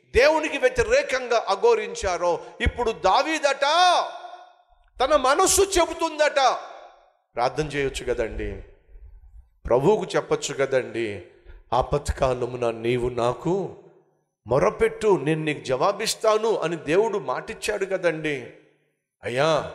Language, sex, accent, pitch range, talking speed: Telugu, male, native, 150-255 Hz, 75 wpm